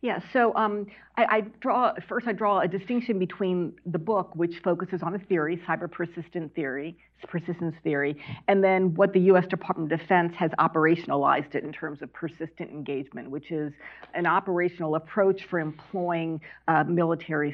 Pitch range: 160-195 Hz